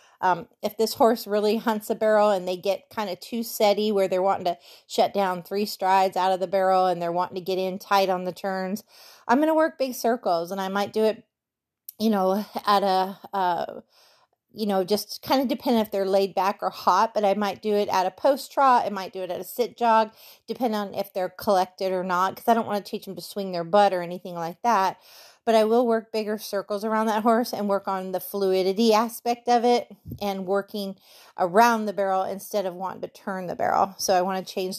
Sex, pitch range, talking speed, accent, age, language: female, 190-225 Hz, 240 wpm, American, 30-49, English